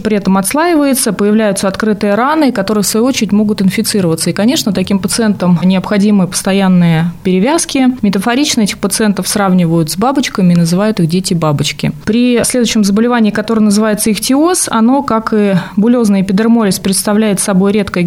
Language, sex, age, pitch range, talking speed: Russian, female, 20-39, 190-230 Hz, 145 wpm